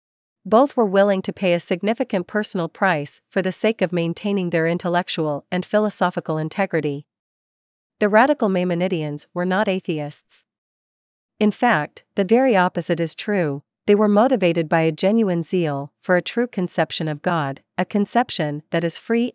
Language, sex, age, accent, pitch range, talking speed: English, female, 40-59, American, 160-200 Hz, 155 wpm